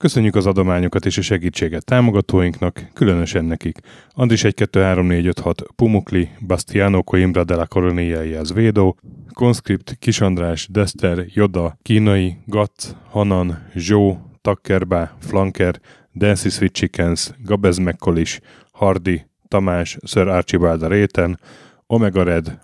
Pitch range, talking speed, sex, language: 90-105 Hz, 110 wpm, male, Hungarian